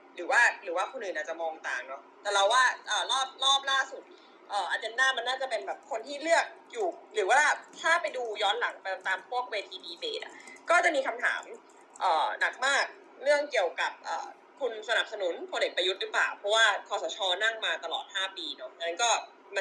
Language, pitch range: Thai, 215-350 Hz